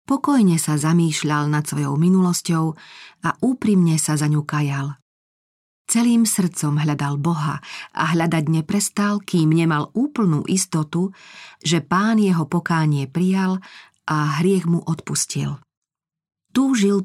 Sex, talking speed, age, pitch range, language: female, 115 wpm, 40-59, 155-185 Hz, Slovak